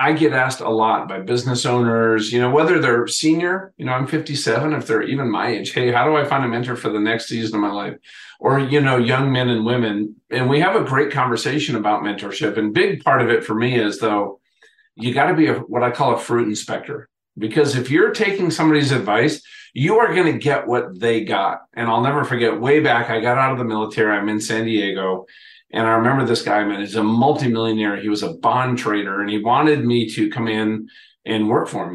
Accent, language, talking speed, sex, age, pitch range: American, English, 235 wpm, male, 50-69, 110-135 Hz